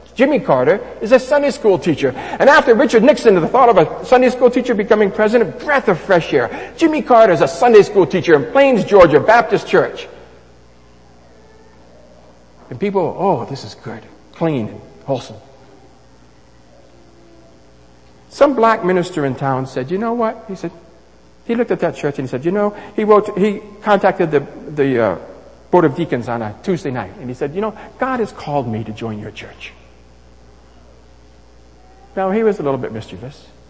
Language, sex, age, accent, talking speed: English, male, 60-79, American, 180 wpm